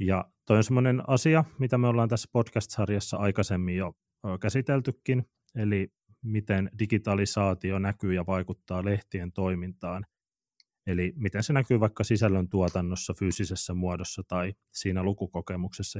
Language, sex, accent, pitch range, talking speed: Finnish, male, native, 95-110 Hz, 115 wpm